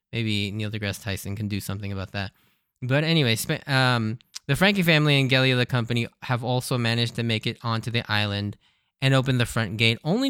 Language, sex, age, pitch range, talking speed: English, male, 10-29, 105-135 Hz, 200 wpm